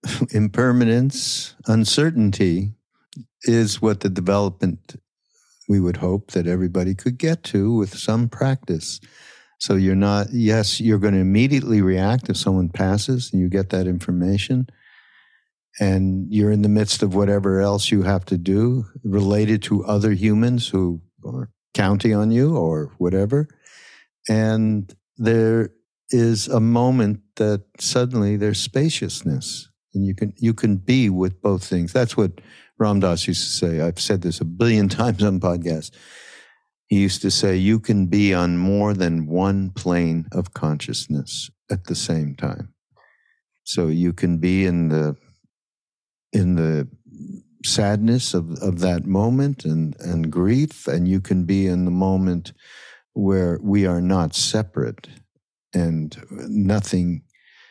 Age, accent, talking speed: 60-79, American, 140 wpm